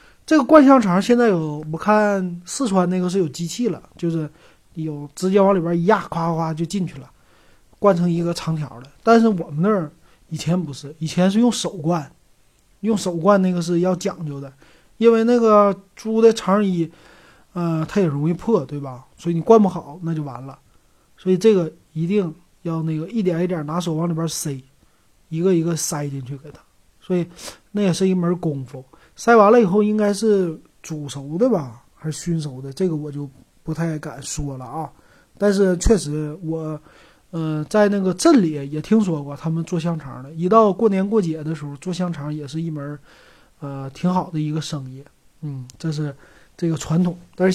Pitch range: 150-190 Hz